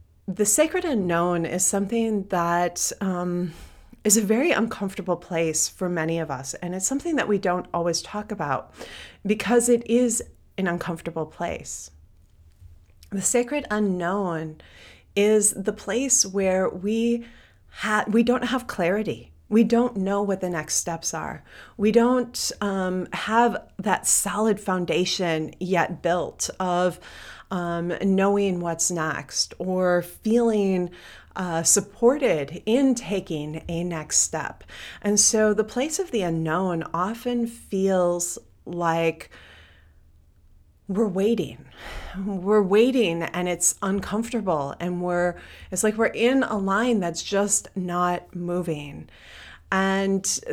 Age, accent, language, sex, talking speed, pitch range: 30-49, American, English, female, 125 wpm, 170-210 Hz